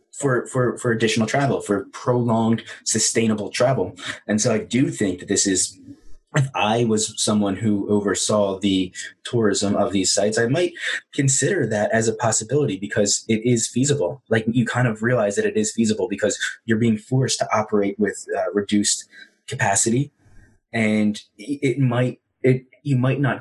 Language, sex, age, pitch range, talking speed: English, male, 20-39, 100-120 Hz, 165 wpm